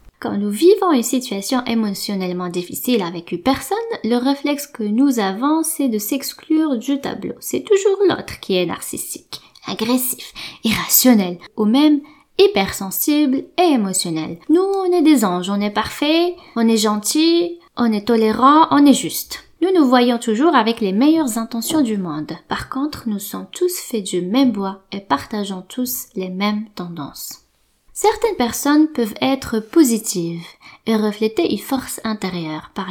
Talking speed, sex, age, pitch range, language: 155 wpm, female, 20-39, 195-275 Hz, French